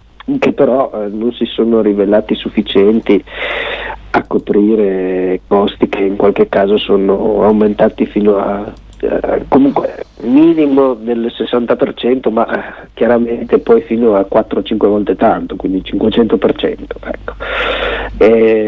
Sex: male